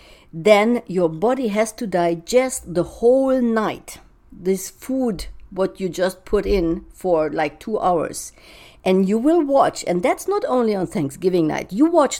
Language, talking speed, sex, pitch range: English, 160 wpm, female, 170-220 Hz